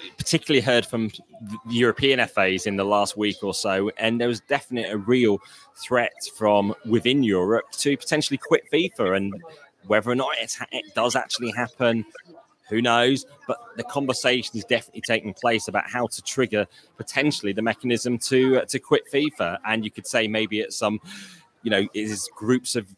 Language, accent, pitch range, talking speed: English, British, 110-130 Hz, 170 wpm